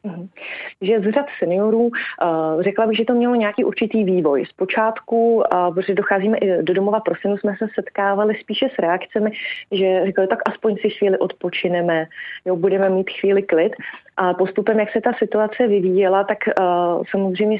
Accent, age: native, 30-49